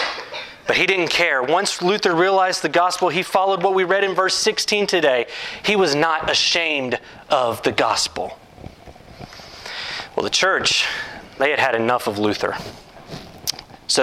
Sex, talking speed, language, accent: male, 145 wpm, English, American